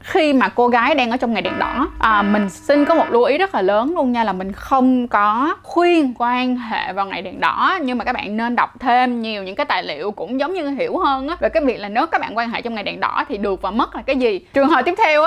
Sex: female